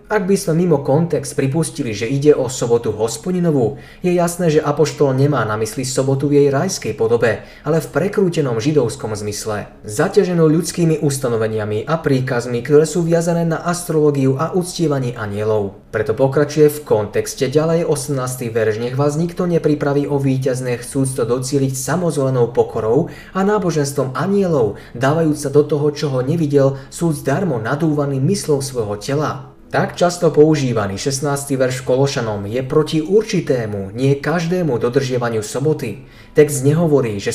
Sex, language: male, Slovak